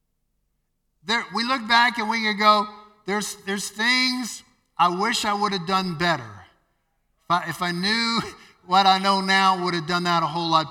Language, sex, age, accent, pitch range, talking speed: English, male, 50-69, American, 170-205 Hz, 190 wpm